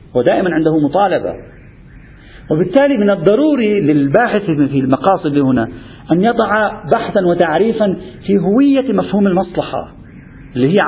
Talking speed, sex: 110 wpm, male